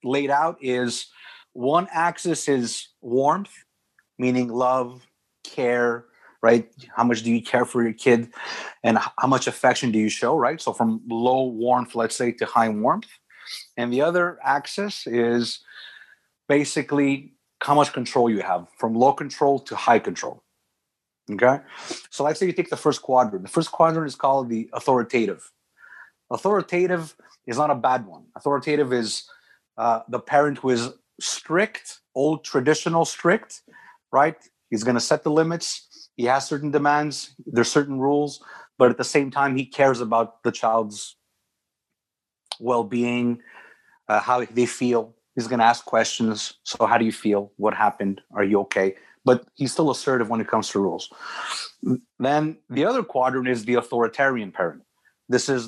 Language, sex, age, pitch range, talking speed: English, male, 30-49, 120-145 Hz, 160 wpm